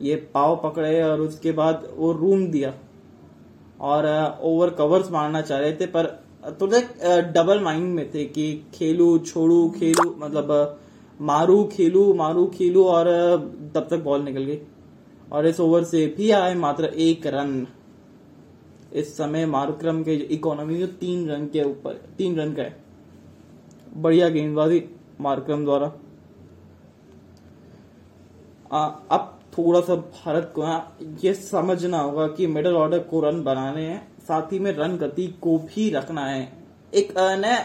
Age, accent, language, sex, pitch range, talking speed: 20-39, native, Hindi, male, 150-175 Hz, 145 wpm